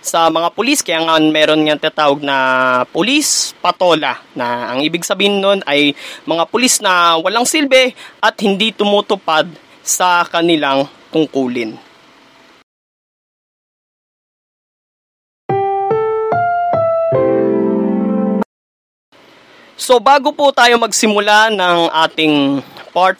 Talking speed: 95 wpm